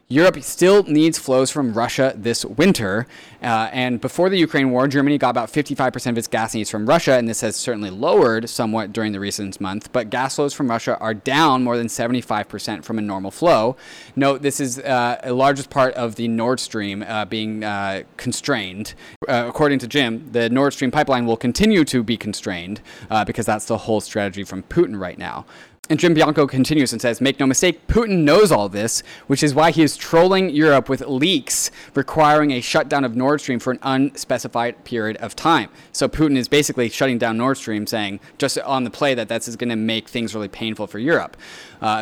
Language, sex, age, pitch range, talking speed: English, male, 20-39, 115-145 Hz, 205 wpm